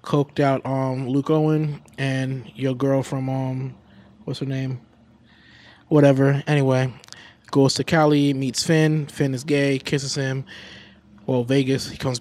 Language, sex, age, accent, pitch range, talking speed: English, male, 20-39, American, 120-145 Hz, 145 wpm